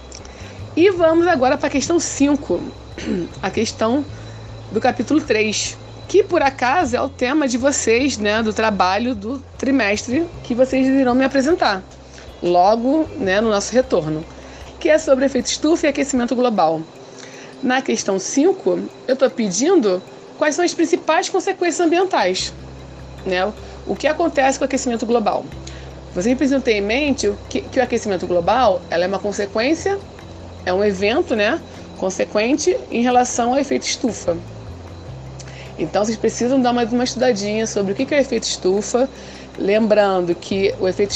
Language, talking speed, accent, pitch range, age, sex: Portuguese, 150 wpm, Brazilian, 185-275 Hz, 20-39, female